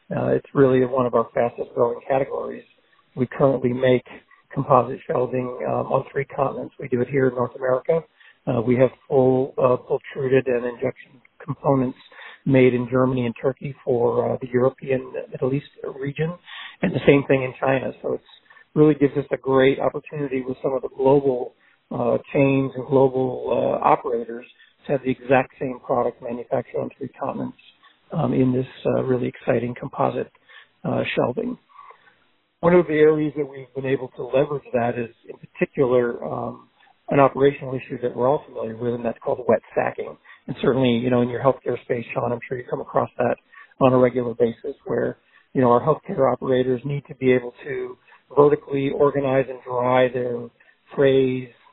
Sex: male